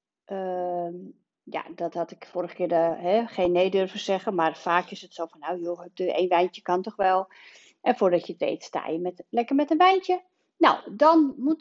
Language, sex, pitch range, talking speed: Dutch, female, 180-255 Hz, 200 wpm